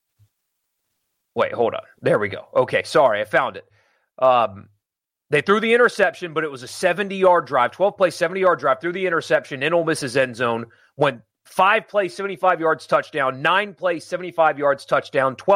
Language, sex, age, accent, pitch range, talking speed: English, male, 30-49, American, 130-175 Hz, 160 wpm